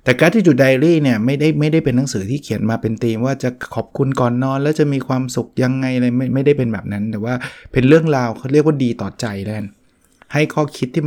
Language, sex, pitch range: Thai, male, 110-140 Hz